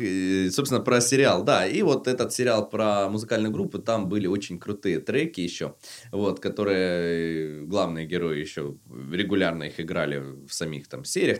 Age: 20-39